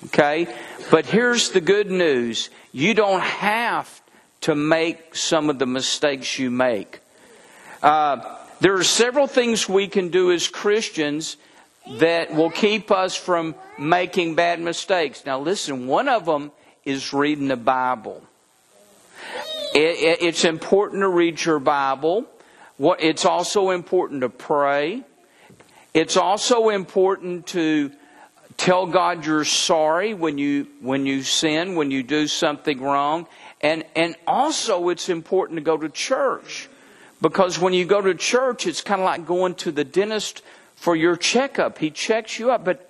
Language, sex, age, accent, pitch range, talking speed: English, male, 50-69, American, 155-225 Hz, 145 wpm